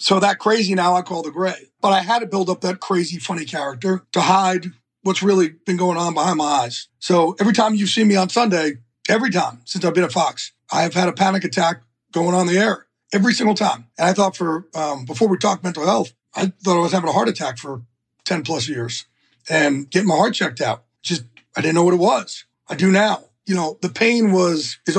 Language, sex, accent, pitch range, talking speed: English, male, American, 155-195 Hz, 240 wpm